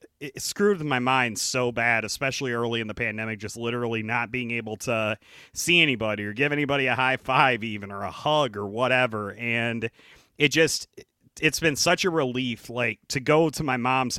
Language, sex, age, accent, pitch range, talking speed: English, male, 30-49, American, 110-130 Hz, 190 wpm